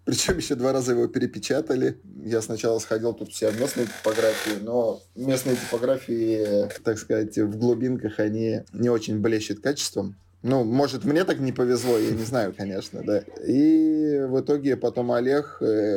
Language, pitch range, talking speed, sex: Russian, 105-125 Hz, 160 wpm, male